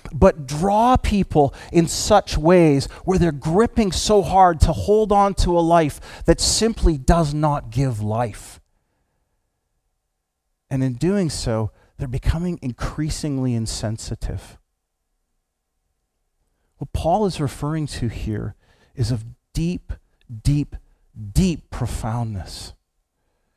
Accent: American